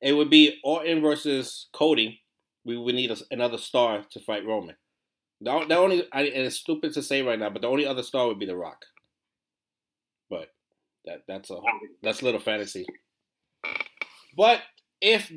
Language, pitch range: English, 115-150 Hz